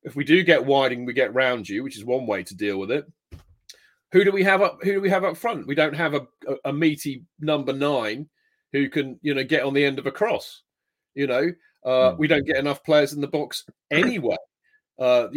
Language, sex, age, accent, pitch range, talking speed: English, male, 40-59, British, 125-155 Hz, 240 wpm